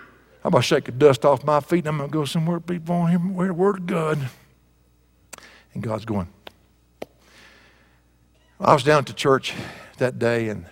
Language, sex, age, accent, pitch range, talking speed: English, male, 60-79, American, 110-175 Hz, 190 wpm